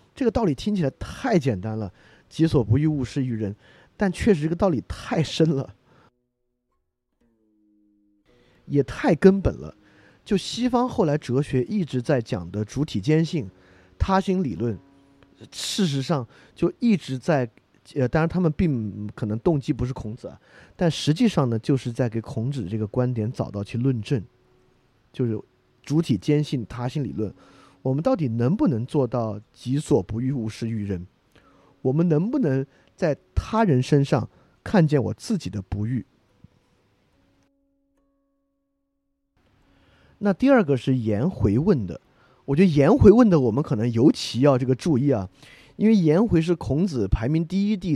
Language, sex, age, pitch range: Chinese, male, 30-49, 115-165 Hz